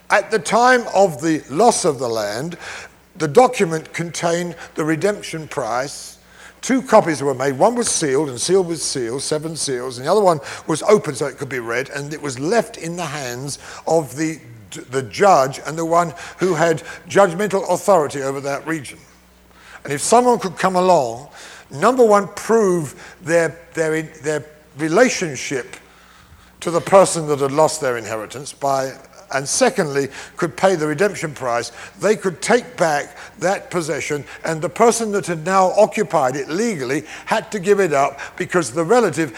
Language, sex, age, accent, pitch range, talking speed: English, male, 50-69, British, 145-195 Hz, 170 wpm